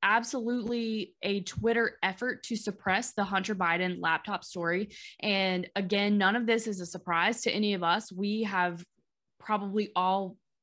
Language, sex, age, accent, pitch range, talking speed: English, female, 20-39, American, 175-210 Hz, 150 wpm